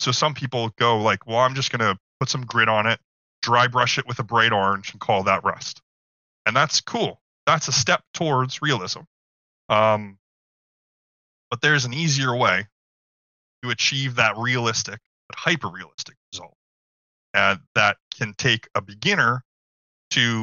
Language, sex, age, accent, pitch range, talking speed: English, male, 20-39, American, 105-135 Hz, 160 wpm